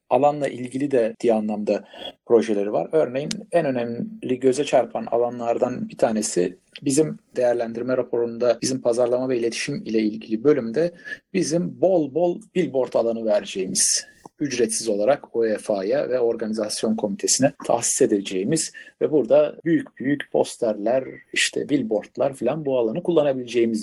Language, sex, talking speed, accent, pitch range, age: Turkish, male, 125 wpm, native, 110-135 Hz, 50-69